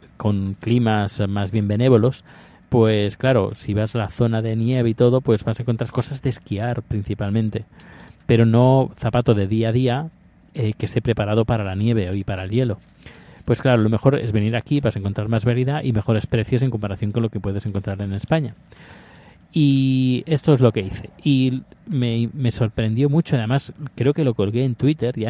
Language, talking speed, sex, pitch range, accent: Spanish, 200 wpm, male, 110-130 Hz, Spanish